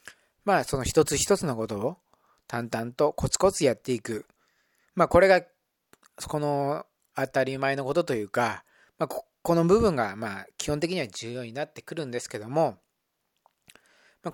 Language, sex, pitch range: Japanese, male, 140-220 Hz